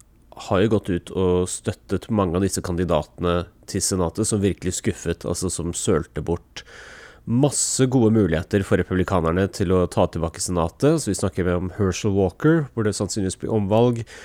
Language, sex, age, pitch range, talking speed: English, male, 30-49, 90-105 Hz, 170 wpm